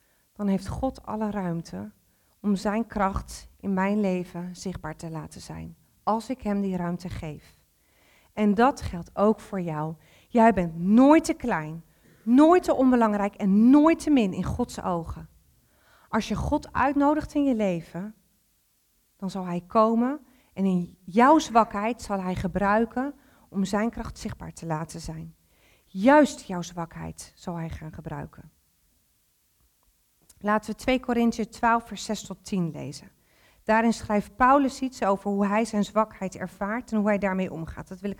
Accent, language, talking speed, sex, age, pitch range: Dutch, Dutch, 160 wpm, female, 40-59, 180-235 Hz